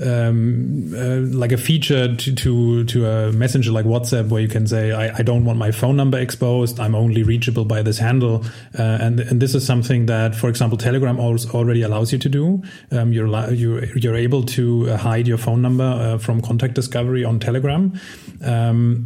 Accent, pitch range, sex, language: German, 115-130 Hz, male, English